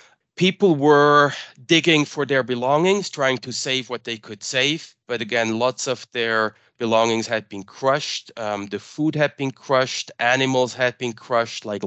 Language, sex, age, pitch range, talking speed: English, male, 30-49, 105-125 Hz, 165 wpm